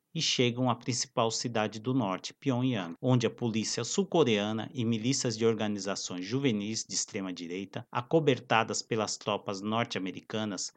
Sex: male